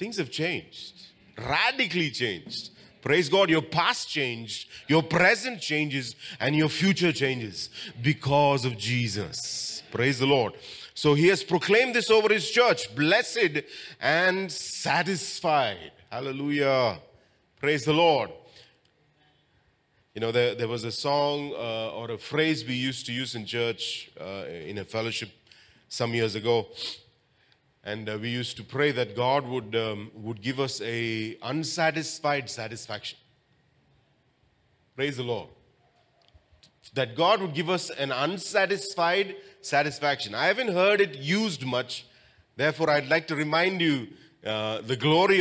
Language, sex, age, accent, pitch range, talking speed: English, male, 30-49, Indian, 120-170 Hz, 135 wpm